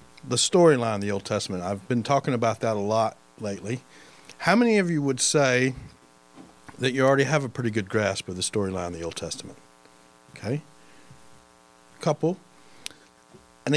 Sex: male